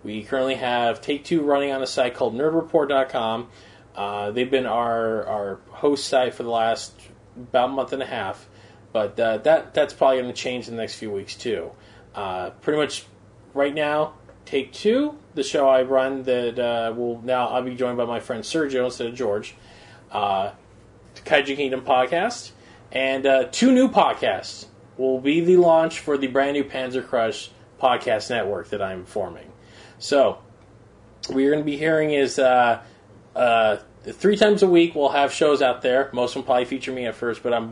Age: 30-49